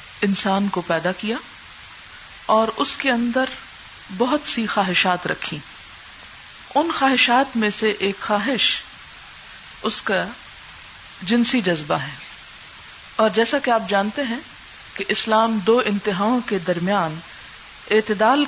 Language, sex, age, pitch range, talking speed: Urdu, female, 50-69, 195-240 Hz, 115 wpm